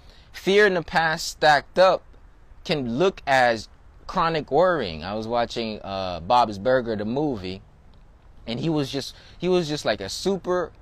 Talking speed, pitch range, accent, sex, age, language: 160 wpm, 120-185 Hz, American, male, 20-39, English